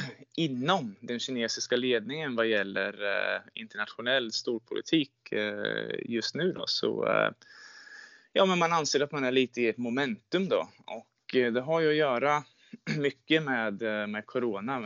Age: 20-39